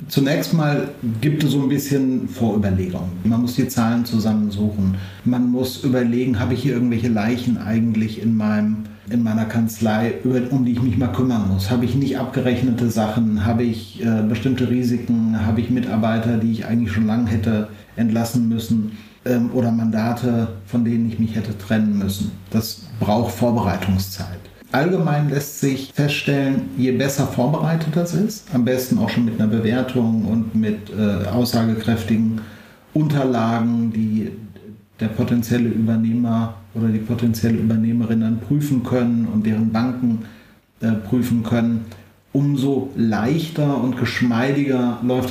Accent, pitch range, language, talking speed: German, 110-130 Hz, German, 145 wpm